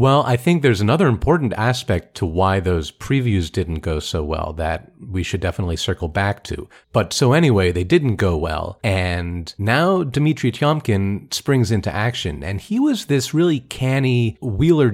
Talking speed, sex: 175 wpm, male